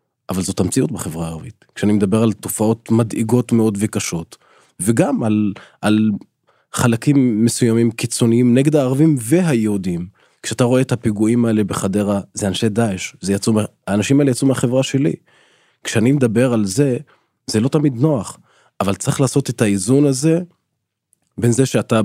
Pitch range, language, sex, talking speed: 100-120 Hz, Hebrew, male, 140 wpm